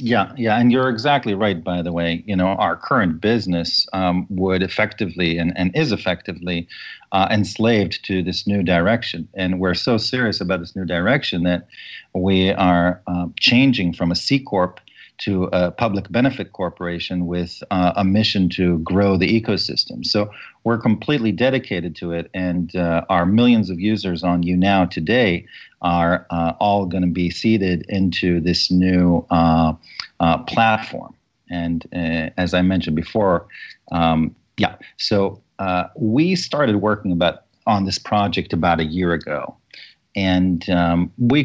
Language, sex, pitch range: English, male, 85-100 Hz